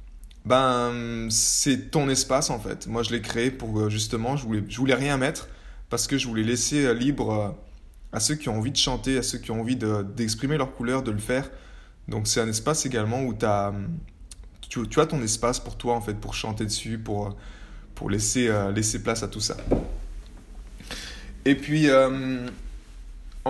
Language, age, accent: French, 20-39, French